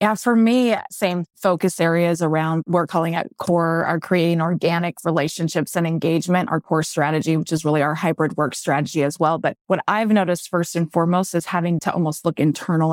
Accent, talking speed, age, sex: American, 195 wpm, 20-39, female